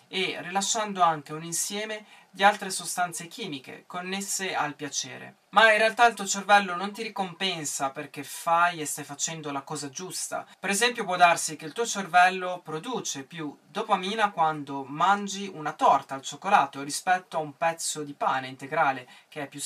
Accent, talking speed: native, 170 wpm